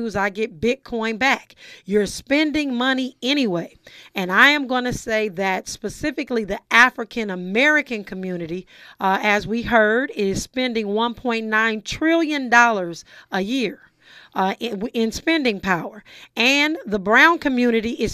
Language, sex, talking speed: English, female, 130 wpm